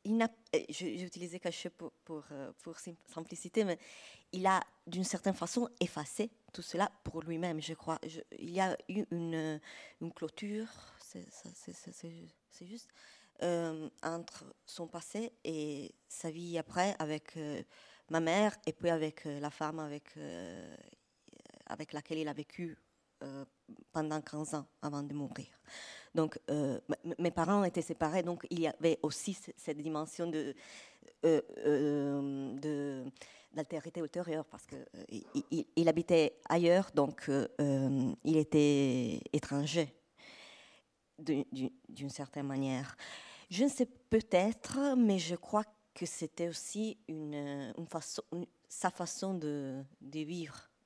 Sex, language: female, French